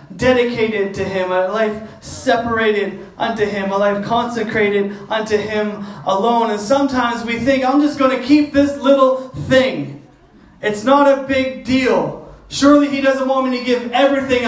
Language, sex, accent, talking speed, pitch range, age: English, male, American, 160 wpm, 235-275 Hz, 30-49